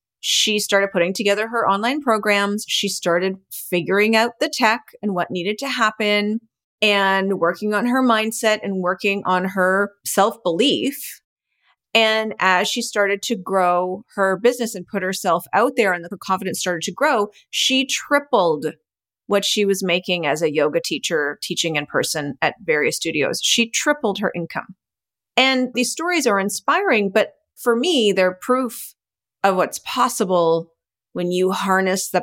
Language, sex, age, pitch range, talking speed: English, female, 30-49, 190-245 Hz, 155 wpm